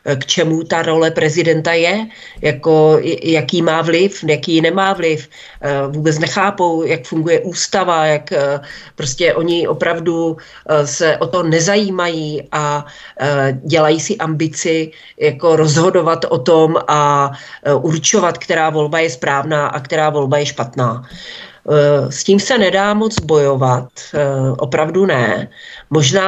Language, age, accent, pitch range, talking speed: Czech, 40-59, native, 145-180 Hz, 120 wpm